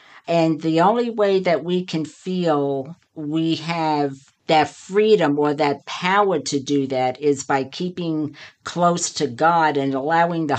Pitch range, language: 140-180 Hz, English